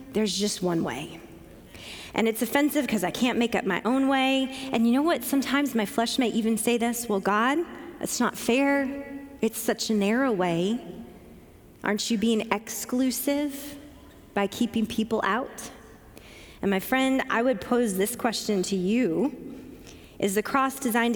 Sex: female